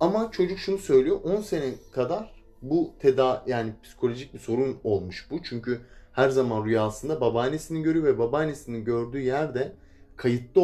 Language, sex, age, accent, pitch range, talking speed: Turkish, male, 30-49, native, 100-150 Hz, 145 wpm